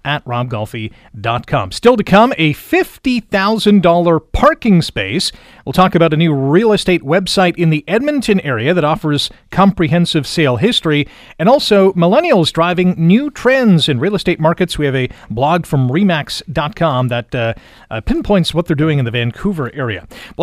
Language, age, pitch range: English, 40-59, 140-190 Hz